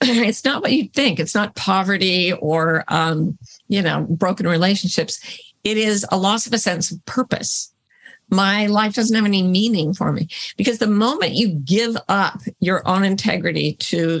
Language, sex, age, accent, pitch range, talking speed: English, female, 50-69, American, 175-230 Hz, 175 wpm